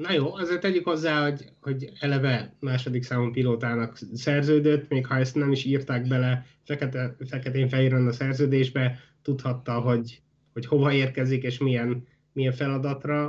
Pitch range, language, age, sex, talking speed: 130-155 Hz, Hungarian, 30-49, male, 140 wpm